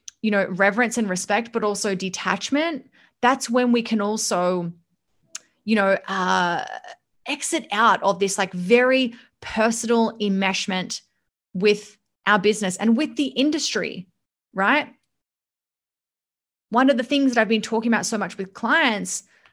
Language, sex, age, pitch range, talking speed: English, female, 20-39, 210-295 Hz, 140 wpm